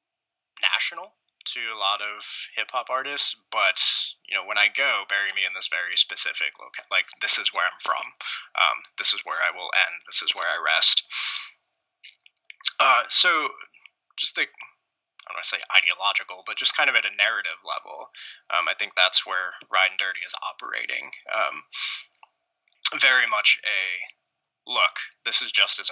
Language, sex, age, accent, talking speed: English, male, 20-39, American, 175 wpm